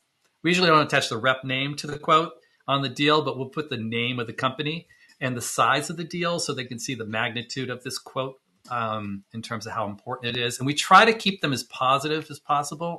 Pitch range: 120-150 Hz